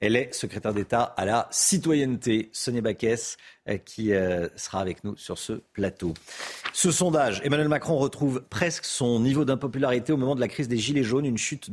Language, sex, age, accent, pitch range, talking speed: French, male, 50-69, French, 110-150 Hz, 180 wpm